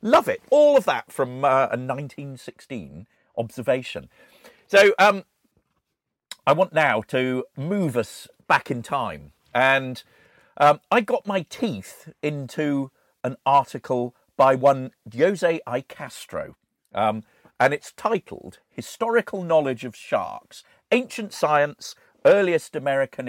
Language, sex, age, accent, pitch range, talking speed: English, male, 50-69, British, 110-145 Hz, 120 wpm